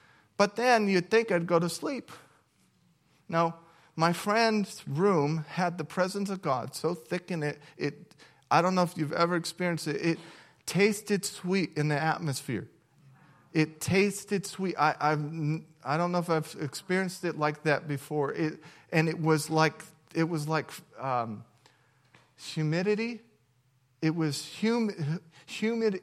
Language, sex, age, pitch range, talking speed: English, male, 40-59, 150-175 Hz, 150 wpm